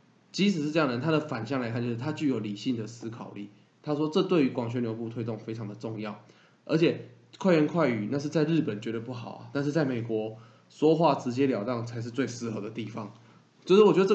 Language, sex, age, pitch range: Chinese, male, 20-39, 115-145 Hz